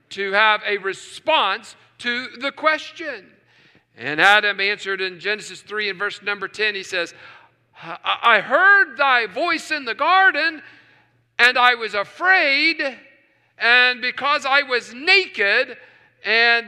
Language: English